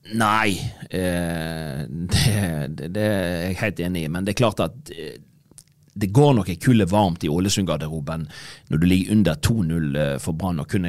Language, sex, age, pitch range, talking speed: English, male, 30-49, 100-145 Hz, 150 wpm